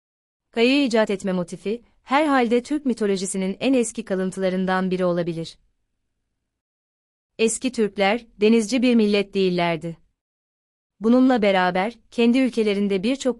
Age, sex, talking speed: 30-49, female, 105 wpm